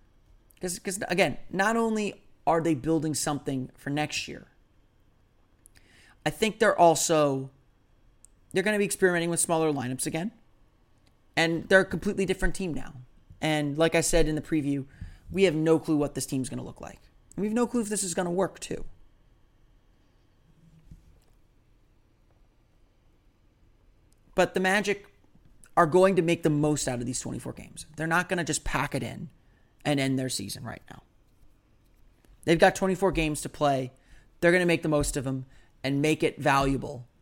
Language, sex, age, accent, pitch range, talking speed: English, male, 30-49, American, 110-165 Hz, 165 wpm